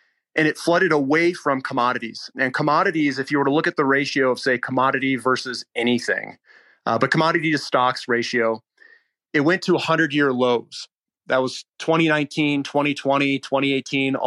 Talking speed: 155 wpm